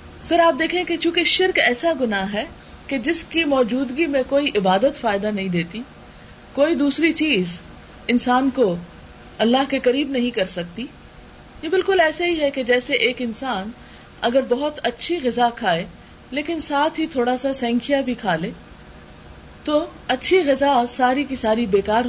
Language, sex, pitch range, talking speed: Urdu, female, 195-285 Hz, 165 wpm